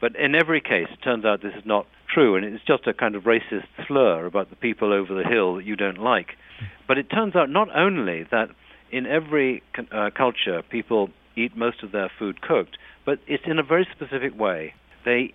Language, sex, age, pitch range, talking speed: English, male, 60-79, 100-130 Hz, 215 wpm